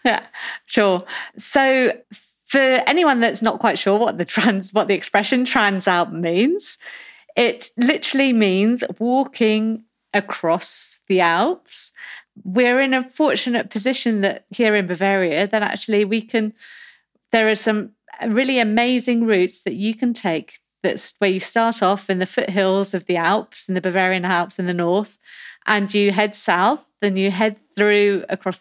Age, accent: 40-59, British